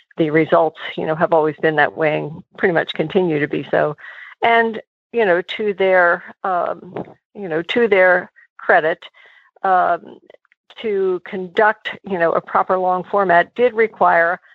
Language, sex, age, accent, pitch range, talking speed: English, female, 50-69, American, 170-200 Hz, 155 wpm